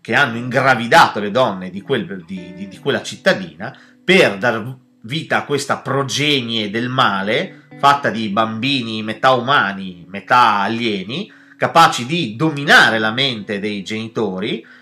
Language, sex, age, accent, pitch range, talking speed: Italian, male, 30-49, native, 115-170 Hz, 140 wpm